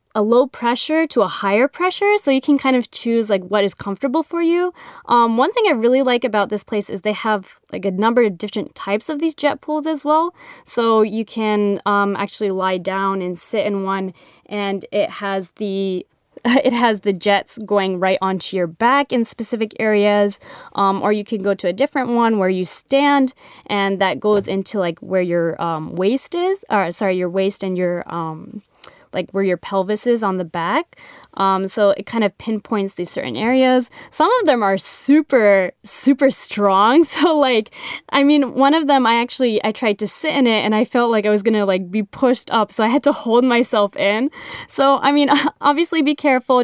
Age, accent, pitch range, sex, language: 10-29, American, 195-265 Hz, female, Japanese